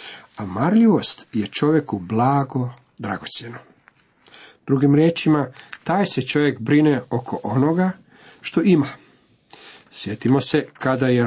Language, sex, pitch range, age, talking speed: Croatian, male, 120-150 Hz, 50-69, 105 wpm